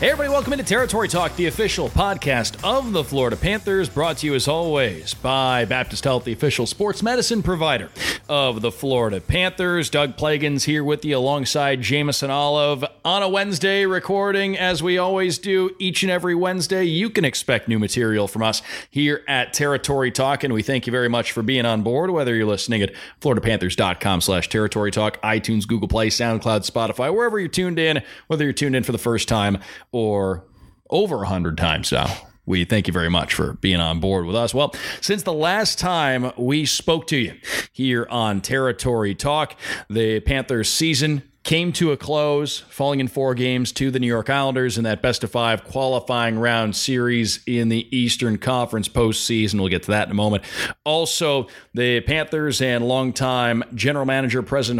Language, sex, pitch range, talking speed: English, male, 115-155 Hz, 185 wpm